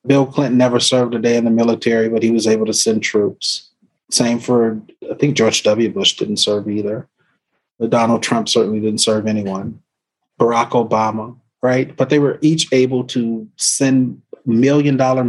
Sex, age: male, 30-49